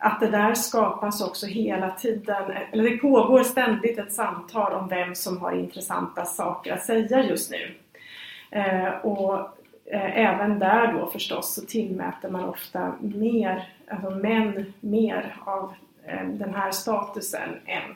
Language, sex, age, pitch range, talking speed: Swedish, female, 30-49, 190-230 Hz, 135 wpm